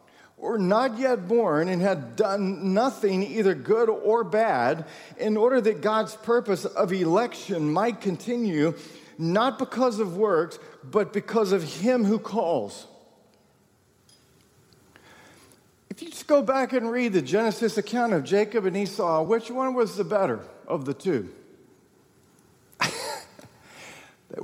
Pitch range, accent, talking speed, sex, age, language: 165-230 Hz, American, 135 wpm, male, 50-69, English